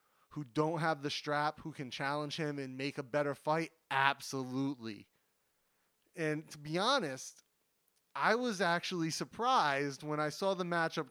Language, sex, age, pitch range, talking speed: English, male, 30-49, 140-165 Hz, 150 wpm